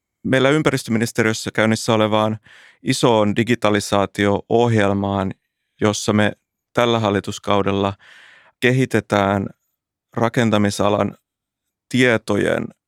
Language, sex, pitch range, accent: Finnish, male, 105-120 Hz, native